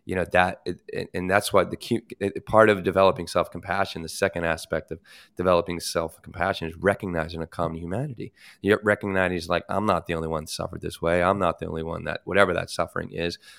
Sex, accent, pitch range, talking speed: male, American, 85-100 Hz, 200 wpm